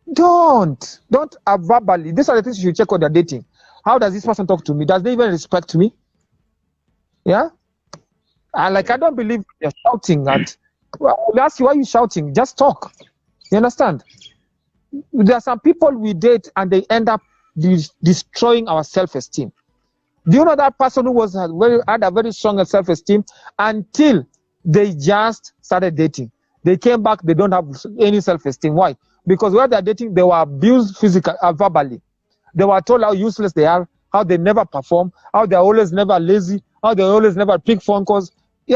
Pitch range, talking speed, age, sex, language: 180-235 Hz, 185 wpm, 40-59, male, English